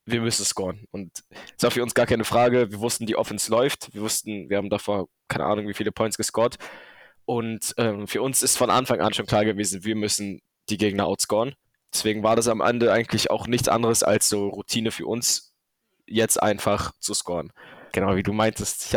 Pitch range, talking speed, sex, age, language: 105-130 Hz, 210 wpm, male, 10-29, German